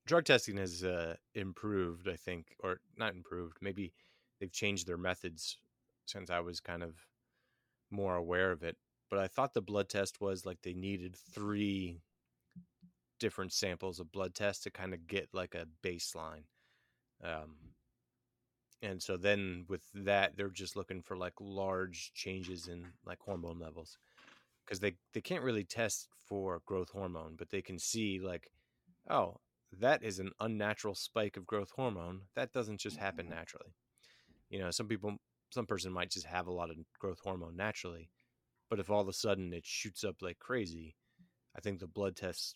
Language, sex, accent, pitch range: English, male, American, 85-100 Hz